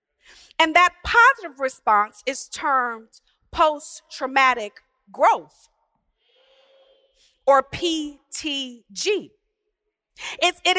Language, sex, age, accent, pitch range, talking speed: English, female, 40-59, American, 275-400 Hz, 60 wpm